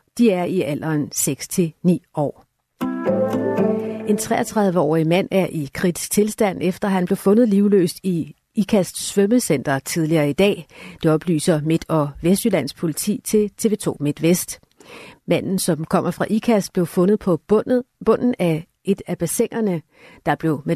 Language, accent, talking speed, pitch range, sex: Danish, native, 140 wpm, 160-205 Hz, female